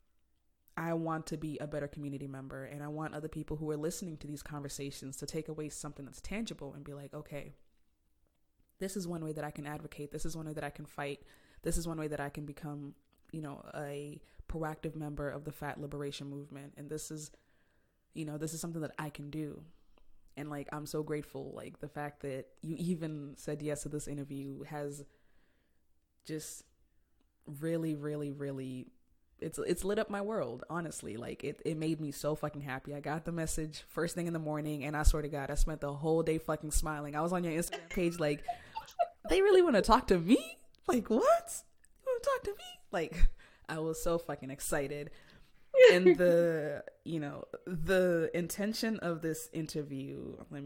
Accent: American